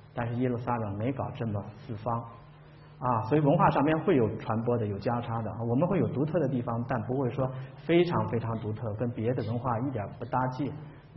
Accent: native